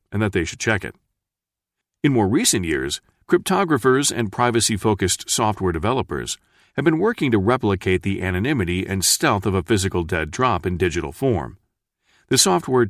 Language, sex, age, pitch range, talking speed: English, male, 40-59, 90-120 Hz, 160 wpm